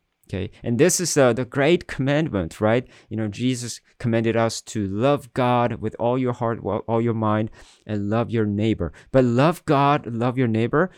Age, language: 30-49, English